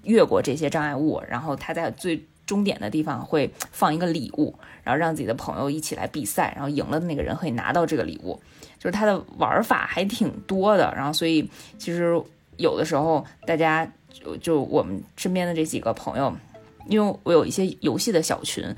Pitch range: 155-190 Hz